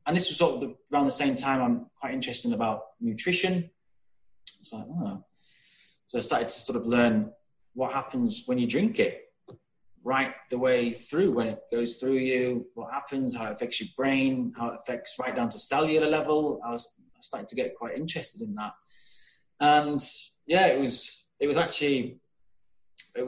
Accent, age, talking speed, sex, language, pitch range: British, 20-39, 185 wpm, male, English, 120-165 Hz